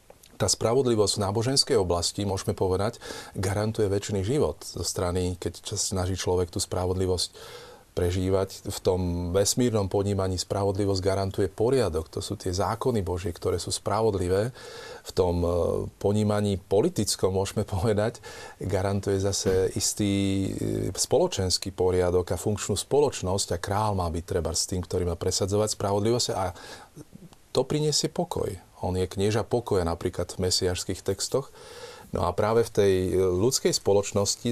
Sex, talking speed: male, 135 wpm